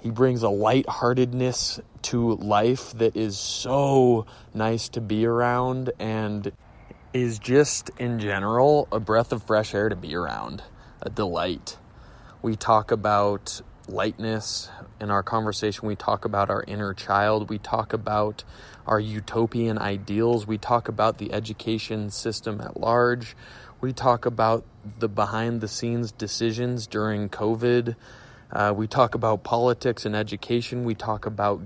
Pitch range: 100-120 Hz